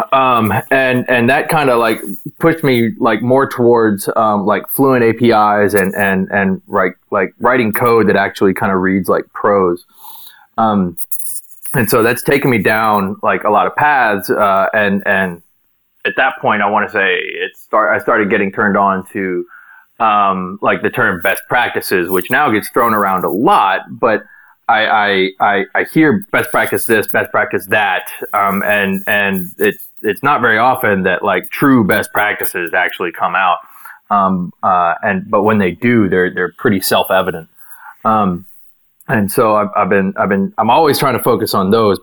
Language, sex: English, male